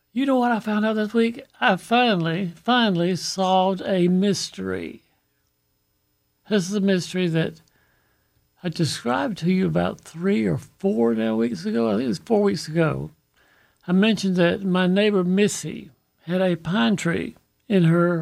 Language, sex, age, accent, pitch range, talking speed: English, male, 60-79, American, 160-200 Hz, 160 wpm